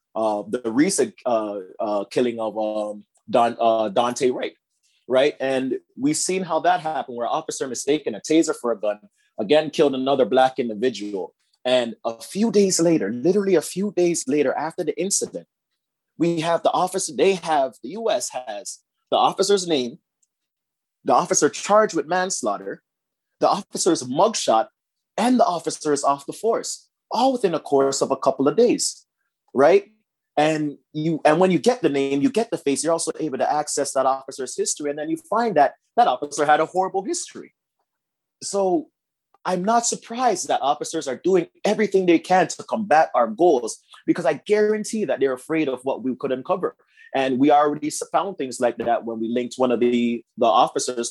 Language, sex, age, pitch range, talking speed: English, male, 30-49, 130-195 Hz, 180 wpm